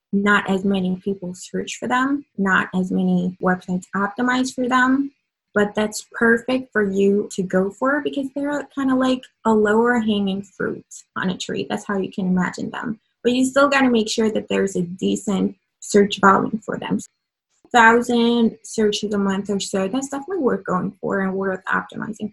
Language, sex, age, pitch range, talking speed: English, female, 20-39, 195-235 Hz, 190 wpm